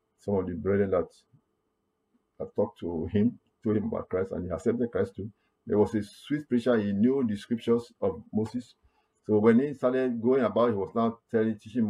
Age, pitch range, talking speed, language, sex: 50-69, 105-125 Hz, 200 wpm, English, male